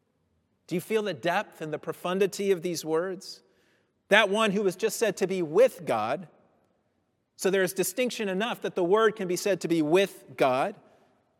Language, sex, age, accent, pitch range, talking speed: English, male, 40-59, American, 145-200 Hz, 190 wpm